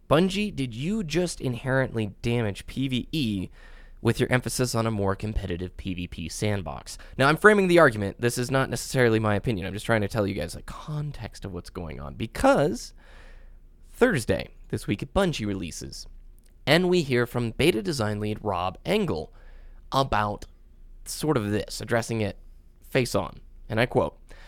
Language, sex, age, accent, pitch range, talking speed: English, male, 20-39, American, 90-125 Hz, 160 wpm